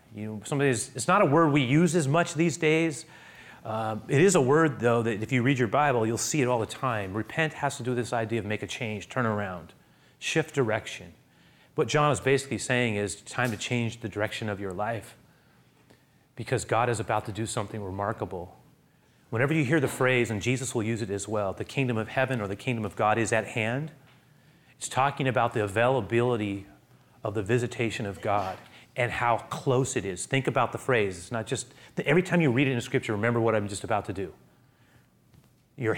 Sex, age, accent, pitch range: male, 30-49, American, 110-135 Hz